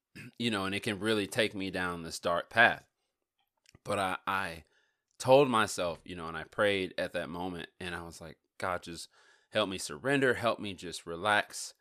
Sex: male